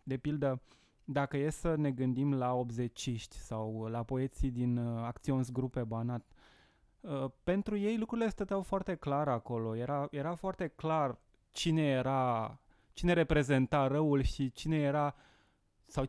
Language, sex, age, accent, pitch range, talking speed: Romanian, male, 20-39, native, 120-145 Hz, 140 wpm